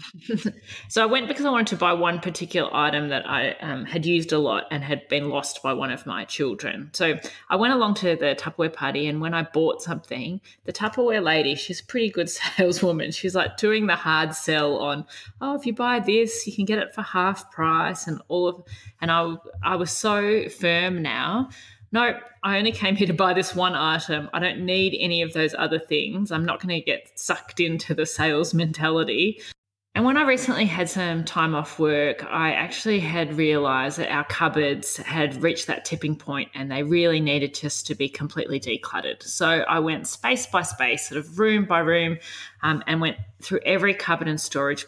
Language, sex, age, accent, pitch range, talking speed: English, female, 20-39, Australian, 150-190 Hz, 205 wpm